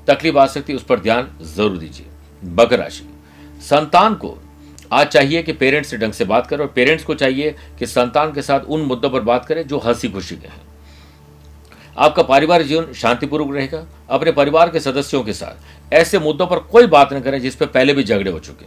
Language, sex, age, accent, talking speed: Hindi, male, 60-79, native, 210 wpm